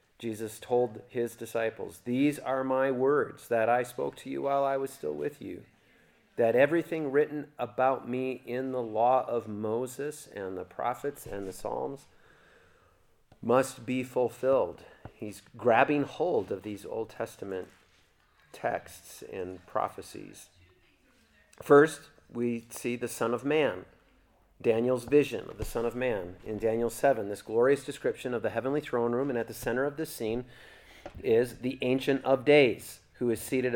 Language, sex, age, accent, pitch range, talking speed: English, male, 40-59, American, 110-135 Hz, 155 wpm